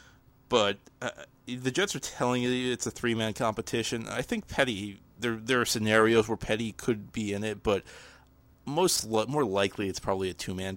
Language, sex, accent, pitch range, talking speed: English, male, American, 95-115 Hz, 180 wpm